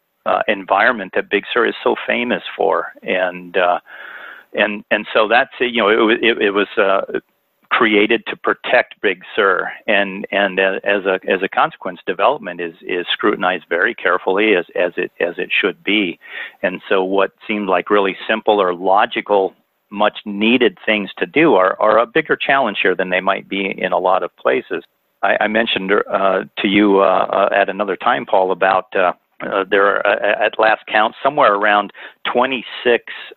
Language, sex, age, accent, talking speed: English, male, 40-59, American, 180 wpm